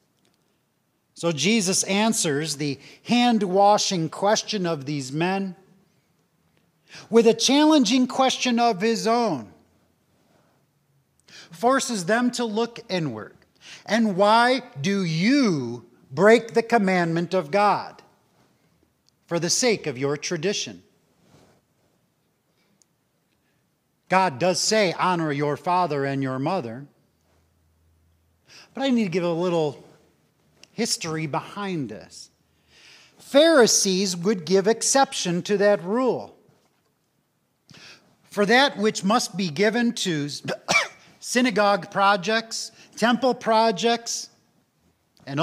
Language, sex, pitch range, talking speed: English, male, 165-230 Hz, 100 wpm